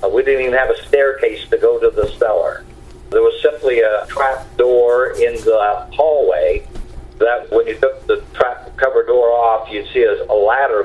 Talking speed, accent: 185 wpm, American